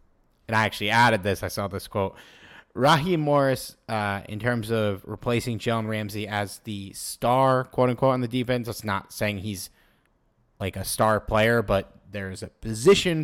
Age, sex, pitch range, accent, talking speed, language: 30-49, male, 105-125 Hz, American, 170 wpm, English